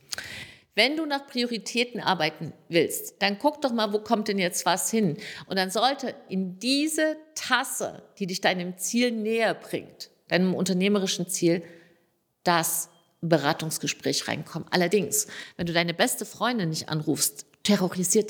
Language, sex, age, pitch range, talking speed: German, female, 50-69, 170-240 Hz, 140 wpm